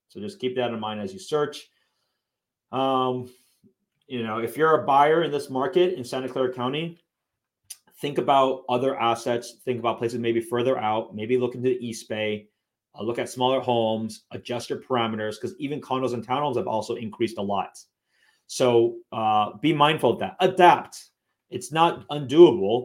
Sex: male